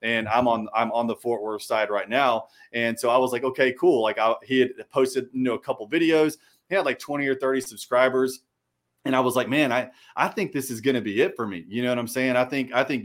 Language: English